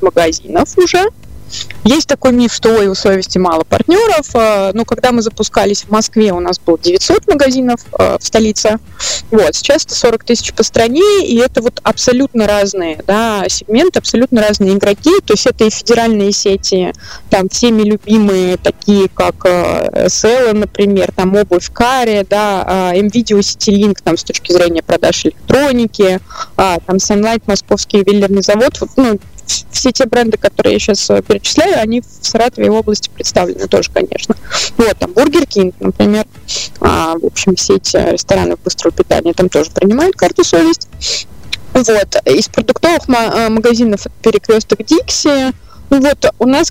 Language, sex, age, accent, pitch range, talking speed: Russian, female, 20-39, native, 200-265 Hz, 150 wpm